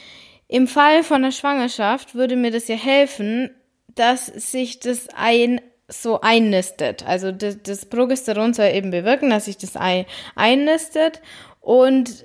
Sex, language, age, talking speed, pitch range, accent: female, German, 20-39, 140 wpm, 215-265 Hz, German